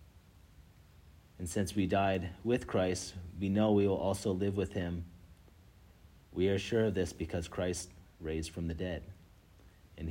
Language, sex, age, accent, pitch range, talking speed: English, male, 40-59, American, 85-100 Hz, 155 wpm